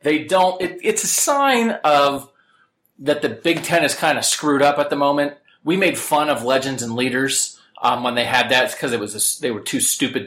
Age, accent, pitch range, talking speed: 30-49, American, 125-160 Hz, 230 wpm